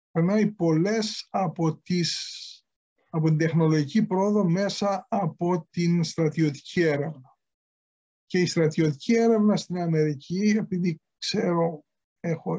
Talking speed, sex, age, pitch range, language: 100 wpm, male, 50-69, 160-200 Hz, Greek